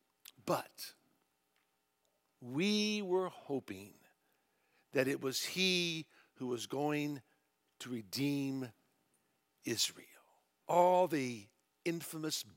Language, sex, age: English, male, 60-79